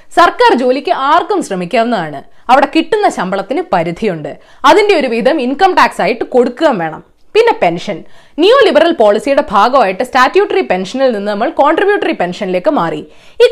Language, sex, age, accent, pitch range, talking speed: Malayalam, female, 20-39, native, 215-345 Hz, 135 wpm